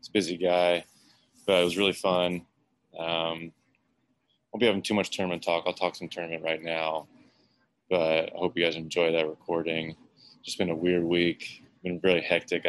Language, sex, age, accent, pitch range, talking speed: English, male, 20-39, American, 80-95 Hz, 195 wpm